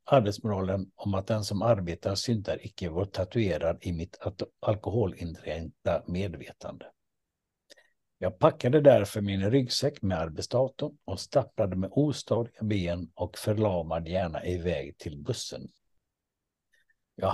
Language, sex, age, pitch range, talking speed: Swedish, male, 60-79, 95-125 Hz, 120 wpm